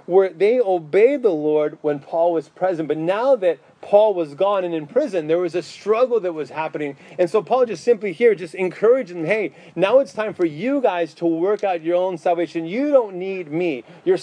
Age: 30-49